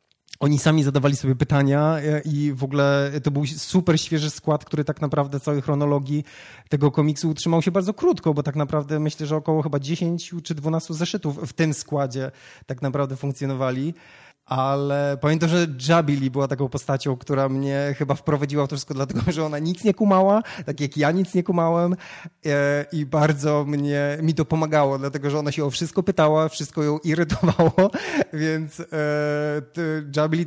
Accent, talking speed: native, 165 wpm